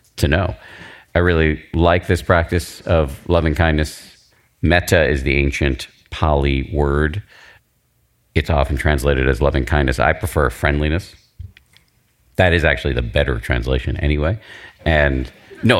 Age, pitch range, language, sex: 40-59, 70-90 Hz, English, male